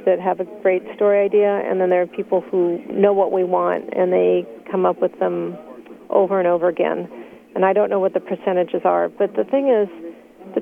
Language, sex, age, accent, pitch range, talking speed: English, female, 40-59, American, 190-230 Hz, 220 wpm